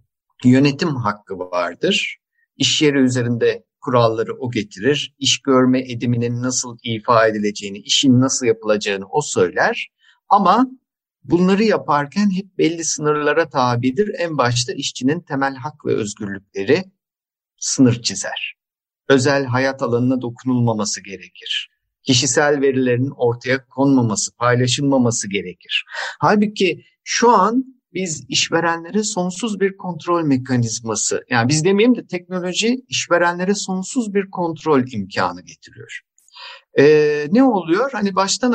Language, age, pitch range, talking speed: Turkish, 50-69, 125-185 Hz, 110 wpm